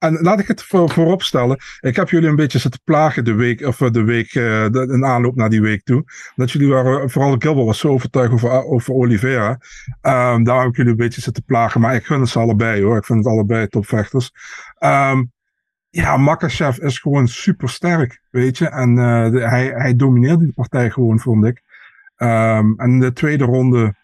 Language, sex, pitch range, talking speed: Dutch, male, 115-135 Hz, 200 wpm